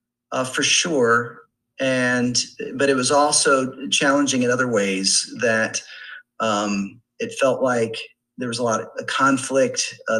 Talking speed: 140 wpm